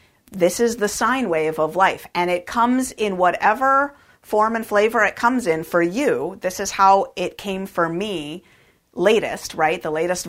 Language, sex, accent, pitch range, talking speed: English, female, American, 155-200 Hz, 180 wpm